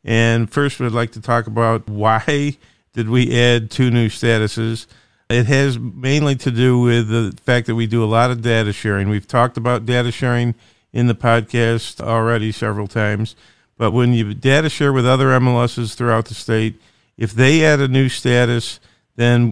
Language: English